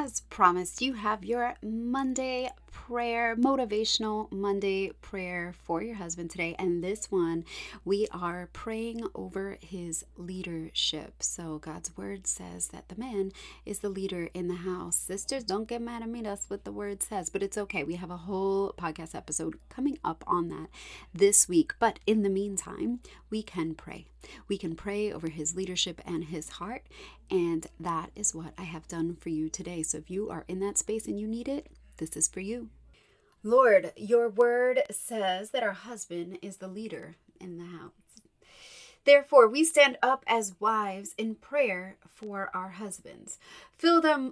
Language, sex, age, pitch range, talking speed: English, female, 30-49, 180-235 Hz, 175 wpm